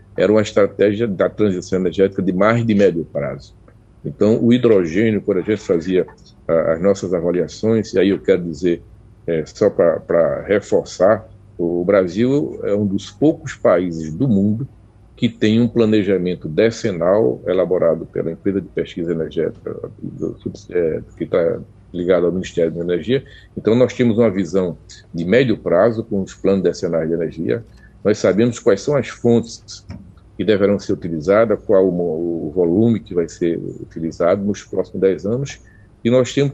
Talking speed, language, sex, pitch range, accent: 155 wpm, Portuguese, male, 95-115 Hz, Brazilian